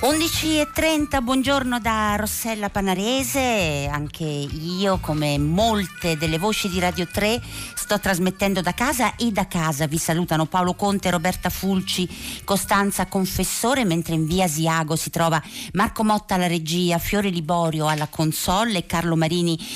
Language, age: Italian, 50-69